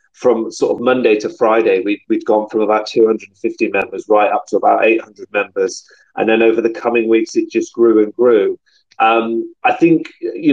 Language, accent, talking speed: English, British, 195 wpm